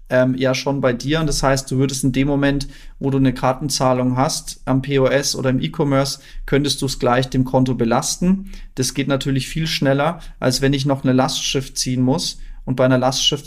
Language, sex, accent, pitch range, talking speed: German, male, German, 130-160 Hz, 205 wpm